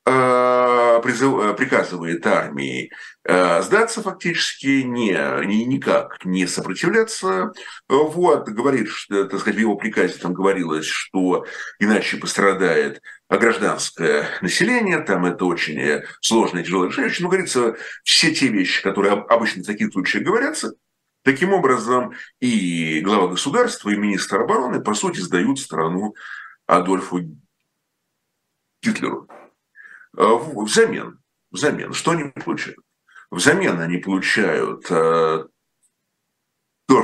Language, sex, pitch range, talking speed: Russian, male, 90-135 Hz, 100 wpm